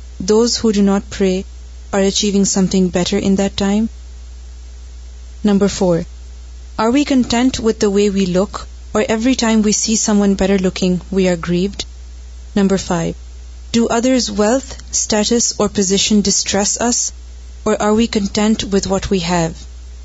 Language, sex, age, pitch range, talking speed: Urdu, female, 30-49, 170-215 Hz, 155 wpm